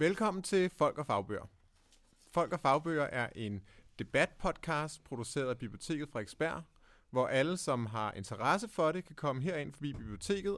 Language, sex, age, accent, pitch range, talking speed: Danish, male, 30-49, native, 110-150 Hz, 160 wpm